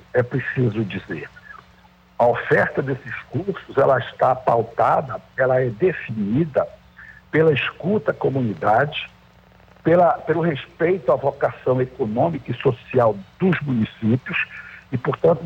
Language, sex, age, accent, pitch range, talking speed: Portuguese, male, 60-79, Brazilian, 115-165 Hz, 110 wpm